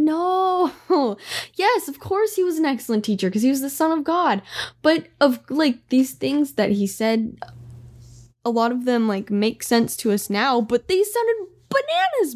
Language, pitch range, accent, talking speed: English, 140-230 Hz, American, 185 wpm